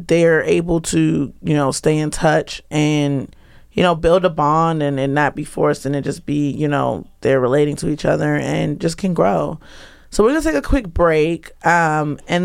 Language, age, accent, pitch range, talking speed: English, 20-39, American, 150-185 Hz, 205 wpm